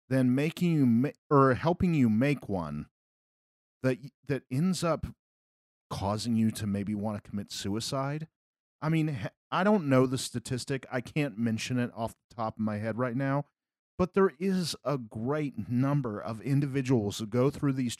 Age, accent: 40-59, American